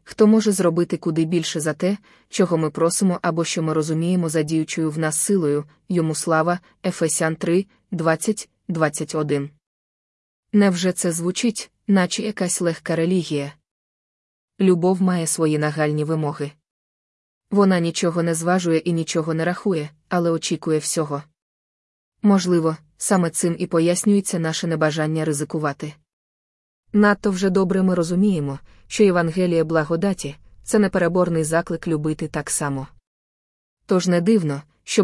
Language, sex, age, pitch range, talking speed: Ukrainian, female, 20-39, 155-180 Hz, 130 wpm